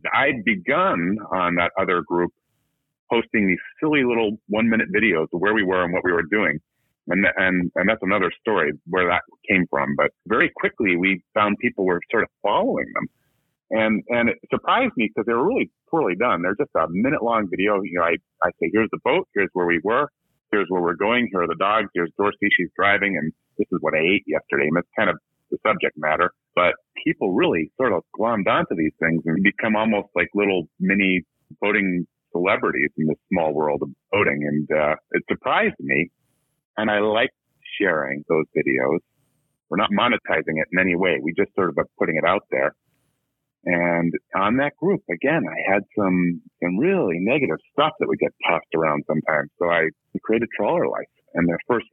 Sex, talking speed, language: male, 200 wpm, English